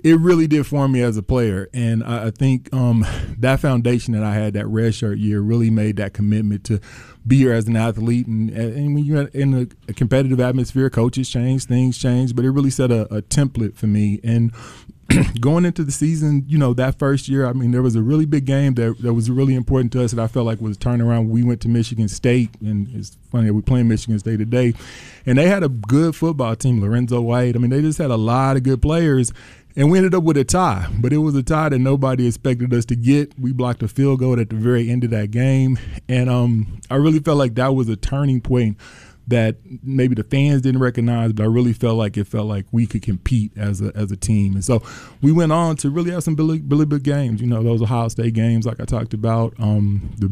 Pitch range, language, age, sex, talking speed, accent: 110-135 Hz, English, 20-39, male, 245 wpm, American